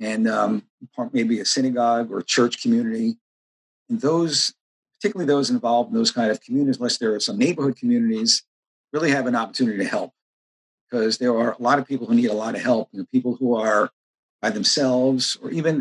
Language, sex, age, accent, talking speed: English, male, 50-69, American, 200 wpm